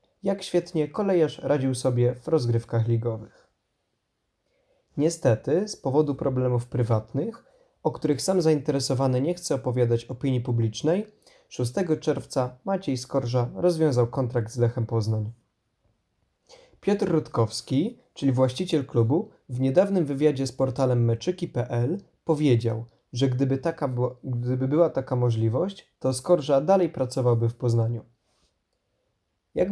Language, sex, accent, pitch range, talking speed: Polish, male, native, 120-165 Hz, 115 wpm